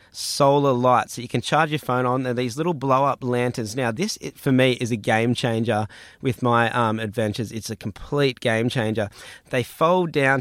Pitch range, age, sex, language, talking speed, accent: 115-150 Hz, 20-39, male, English, 215 wpm, Australian